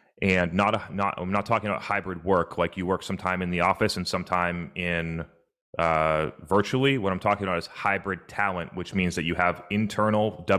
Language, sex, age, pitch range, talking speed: English, male, 30-49, 90-105 Hz, 210 wpm